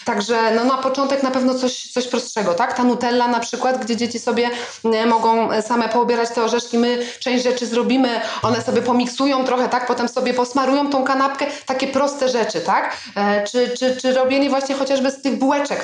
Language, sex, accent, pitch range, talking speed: Polish, female, native, 240-275 Hz, 195 wpm